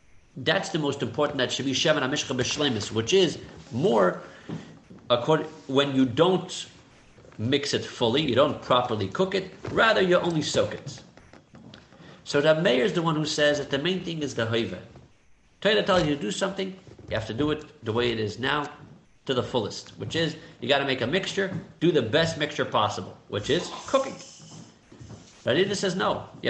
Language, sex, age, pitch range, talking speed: English, male, 50-69, 125-185 Hz, 190 wpm